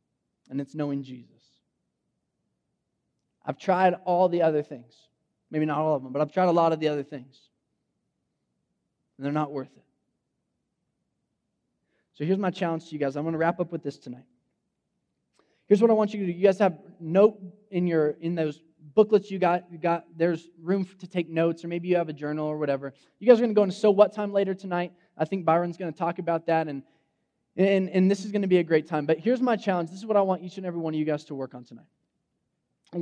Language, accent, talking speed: English, American, 235 wpm